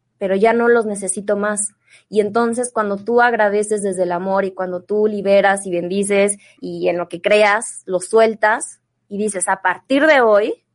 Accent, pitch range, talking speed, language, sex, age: Mexican, 185-220 Hz, 185 wpm, Spanish, female, 20-39